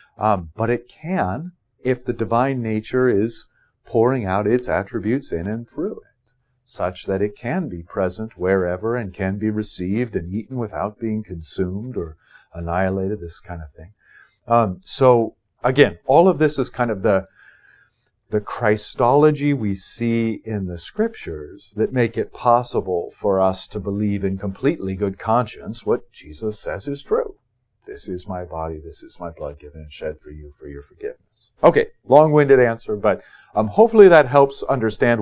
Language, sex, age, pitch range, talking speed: English, male, 50-69, 100-135 Hz, 165 wpm